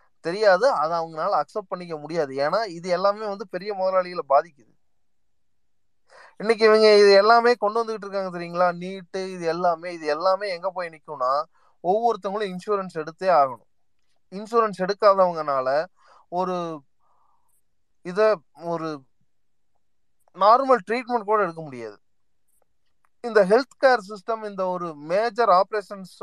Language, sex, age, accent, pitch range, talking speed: Tamil, male, 30-49, native, 160-215 Hz, 35 wpm